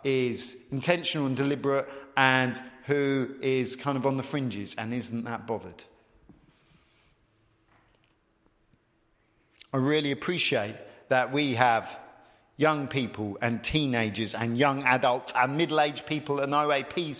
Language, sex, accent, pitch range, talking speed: English, male, British, 125-210 Hz, 120 wpm